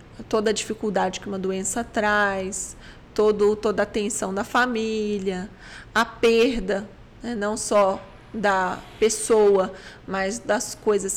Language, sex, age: Portuguese, female, 20-39